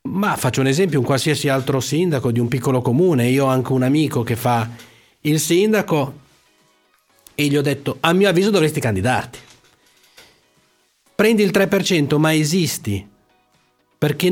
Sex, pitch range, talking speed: male, 125-165 Hz, 150 wpm